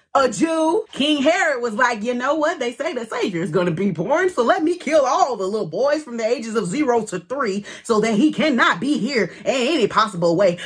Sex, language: female, English